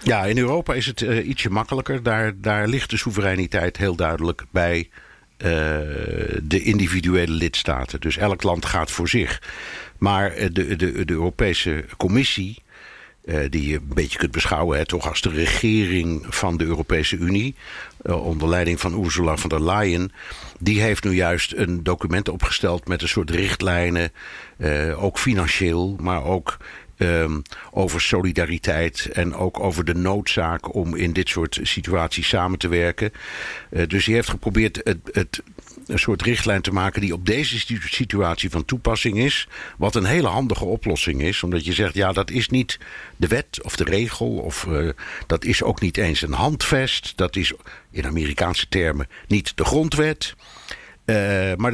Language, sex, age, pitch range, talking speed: Dutch, male, 60-79, 85-110 Hz, 160 wpm